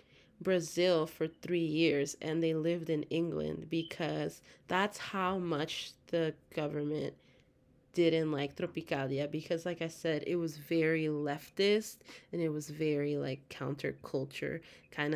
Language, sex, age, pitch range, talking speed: English, female, 20-39, 155-180 Hz, 130 wpm